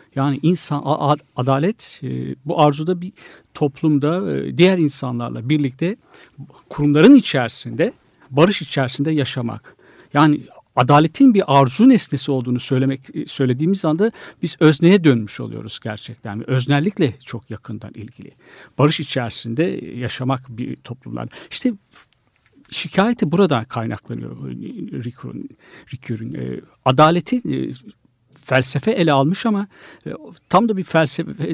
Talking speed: 105 wpm